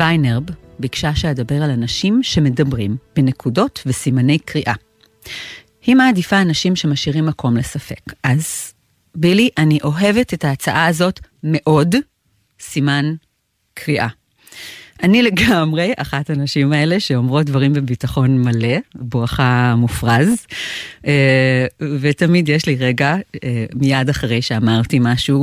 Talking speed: 105 wpm